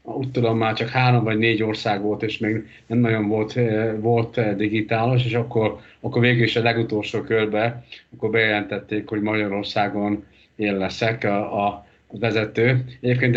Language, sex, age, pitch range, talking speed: Hungarian, male, 50-69, 110-125 Hz, 155 wpm